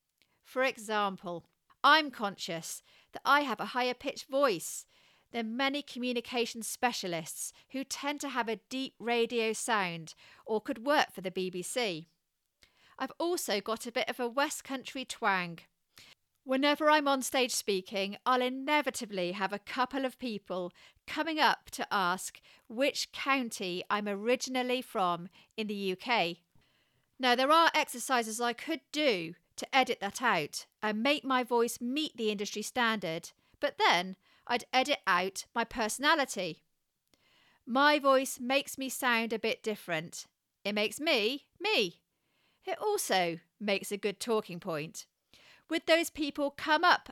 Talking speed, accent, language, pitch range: 145 wpm, British, English, 200-275 Hz